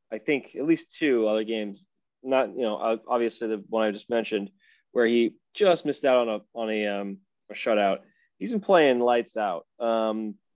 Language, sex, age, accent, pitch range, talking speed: English, male, 20-39, American, 115-140 Hz, 195 wpm